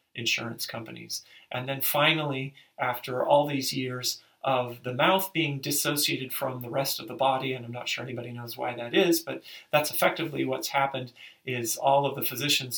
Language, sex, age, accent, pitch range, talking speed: English, male, 40-59, American, 120-135 Hz, 185 wpm